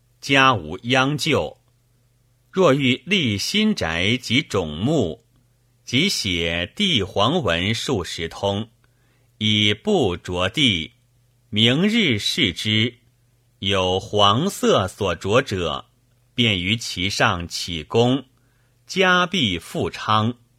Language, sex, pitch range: Chinese, male, 100-130 Hz